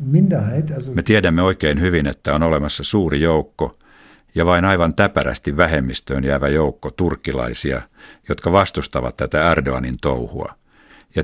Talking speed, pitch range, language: 125 wpm, 70-85 Hz, Finnish